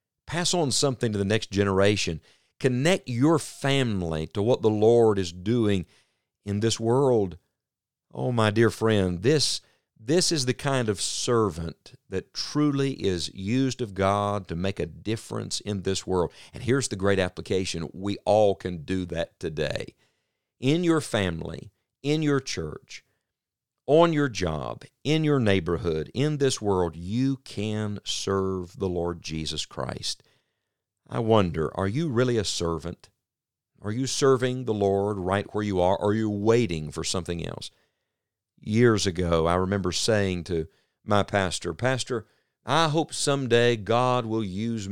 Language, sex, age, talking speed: English, male, 50-69, 150 wpm